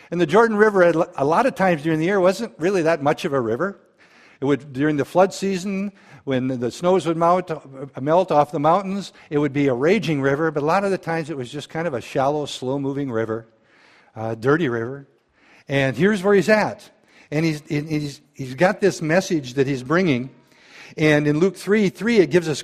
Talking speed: 210 wpm